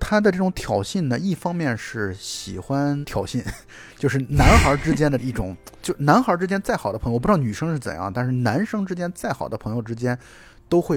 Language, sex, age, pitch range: Chinese, male, 20-39, 110-150 Hz